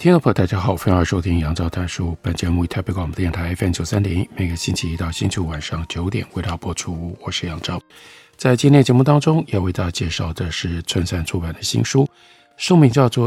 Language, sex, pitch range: Chinese, male, 90-115 Hz